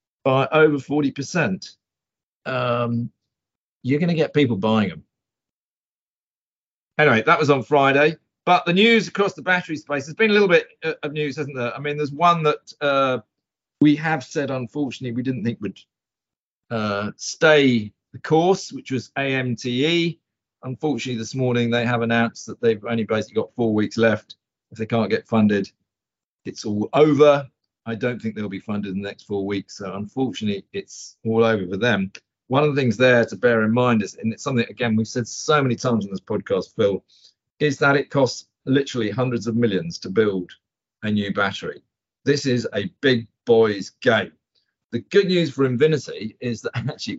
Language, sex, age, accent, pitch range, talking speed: English, male, 40-59, British, 115-145 Hz, 180 wpm